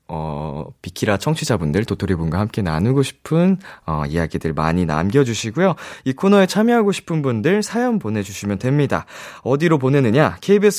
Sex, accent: male, native